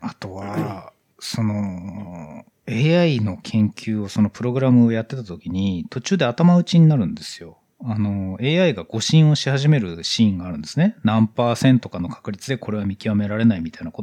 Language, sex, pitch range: Japanese, male, 105-170 Hz